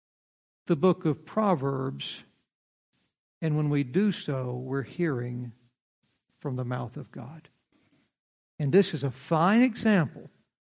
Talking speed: 125 wpm